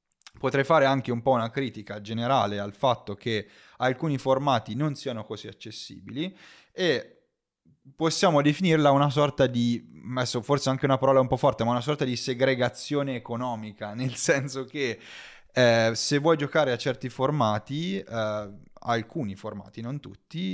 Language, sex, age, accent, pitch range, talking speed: Italian, male, 20-39, native, 110-145 Hz, 150 wpm